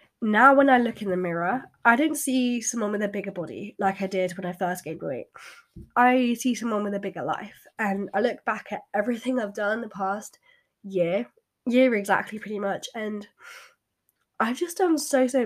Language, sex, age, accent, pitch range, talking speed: English, female, 10-29, British, 195-255 Hz, 200 wpm